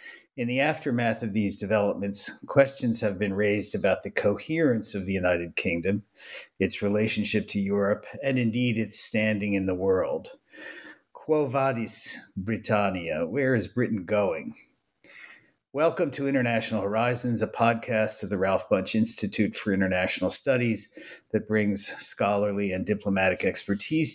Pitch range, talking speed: 95-115 Hz, 135 wpm